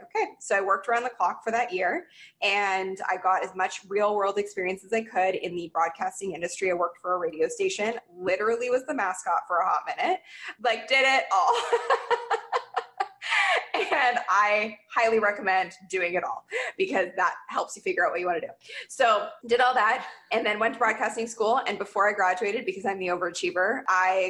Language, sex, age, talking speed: English, female, 20-39, 200 wpm